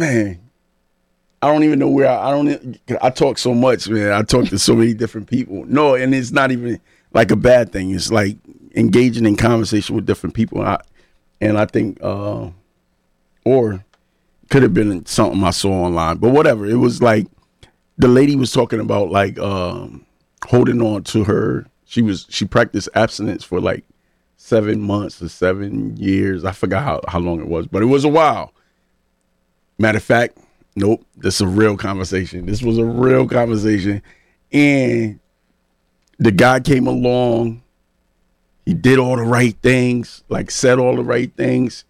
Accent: American